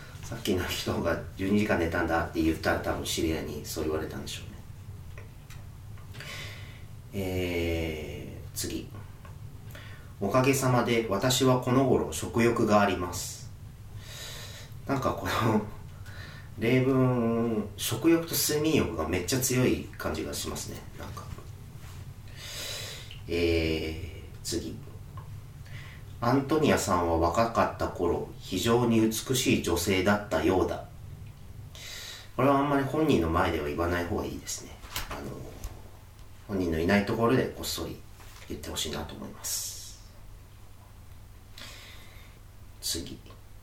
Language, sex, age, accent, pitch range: Japanese, male, 40-59, native, 95-115 Hz